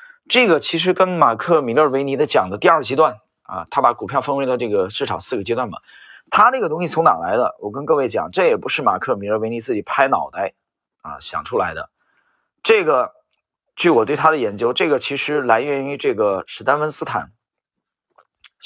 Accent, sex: native, male